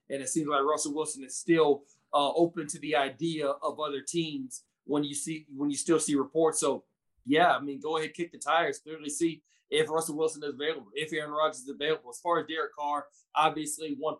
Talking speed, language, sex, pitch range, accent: 220 wpm, English, male, 145-170 Hz, American